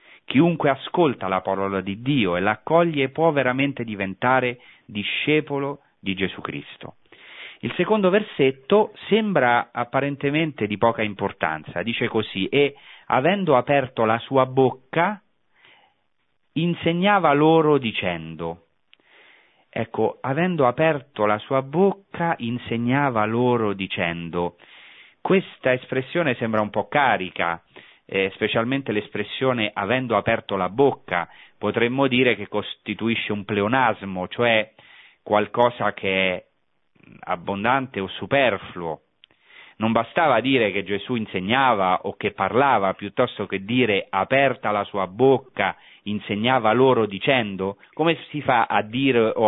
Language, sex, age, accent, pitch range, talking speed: Italian, male, 40-59, native, 100-140 Hz, 115 wpm